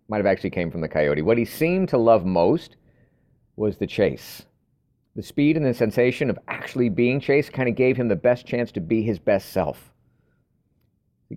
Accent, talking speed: American, 200 wpm